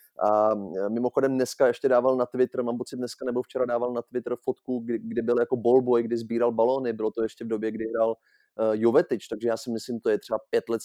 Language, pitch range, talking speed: Czech, 110-125 Hz, 225 wpm